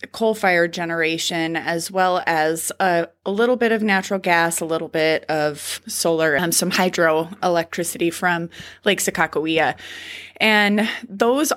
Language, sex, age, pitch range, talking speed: English, female, 20-39, 165-205 Hz, 130 wpm